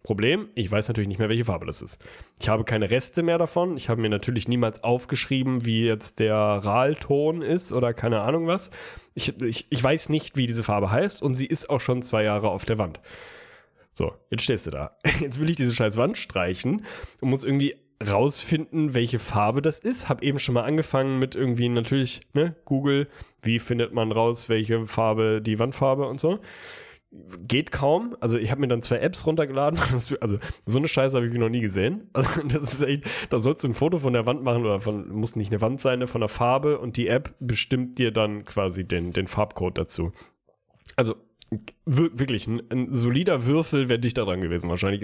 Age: 10-29